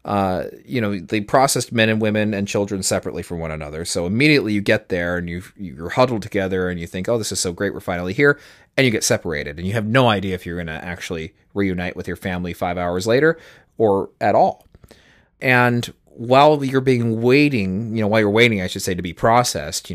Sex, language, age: male, English, 30-49